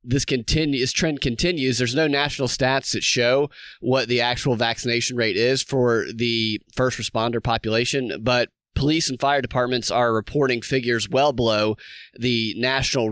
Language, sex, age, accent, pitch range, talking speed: English, male, 30-49, American, 115-145 Hz, 145 wpm